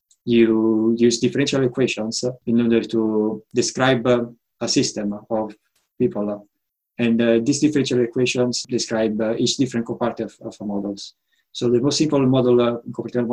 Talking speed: 150 wpm